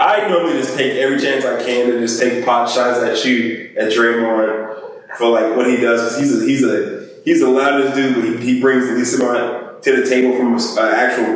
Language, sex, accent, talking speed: English, male, American, 225 wpm